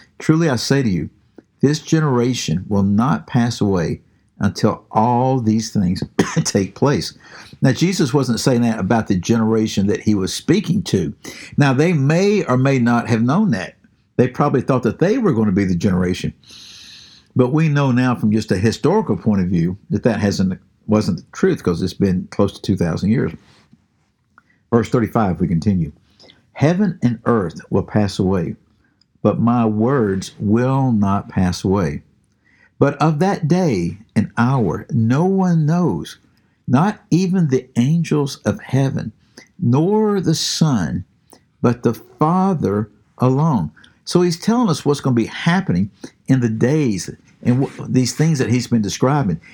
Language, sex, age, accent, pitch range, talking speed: English, male, 60-79, American, 110-150 Hz, 160 wpm